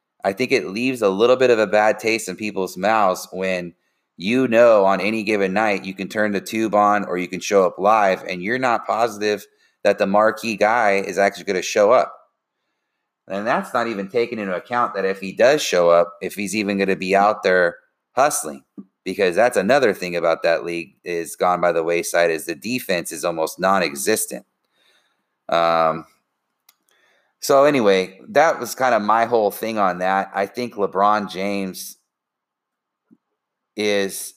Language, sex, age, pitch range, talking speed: English, male, 30-49, 95-110 Hz, 180 wpm